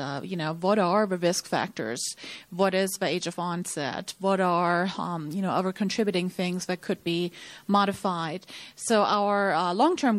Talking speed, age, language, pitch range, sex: 175 wpm, 30-49, English, 180-200 Hz, female